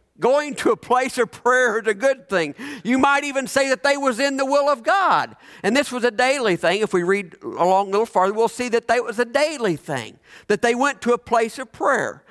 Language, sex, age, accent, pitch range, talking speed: English, male, 50-69, American, 225-290 Hz, 250 wpm